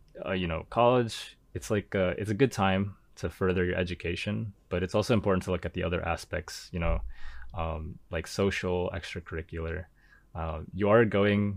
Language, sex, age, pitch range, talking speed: English, male, 20-39, 85-95 Hz, 180 wpm